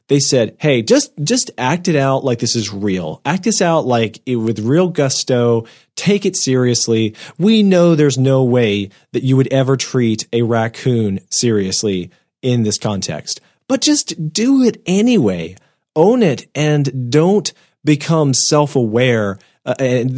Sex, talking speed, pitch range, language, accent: male, 155 wpm, 115-140 Hz, English, American